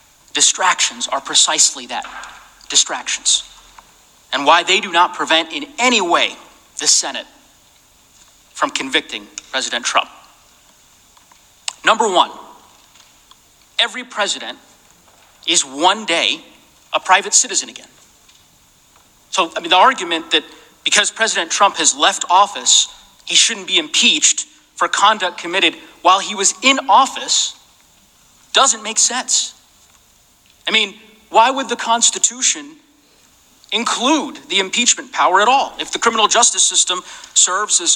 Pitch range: 185-265 Hz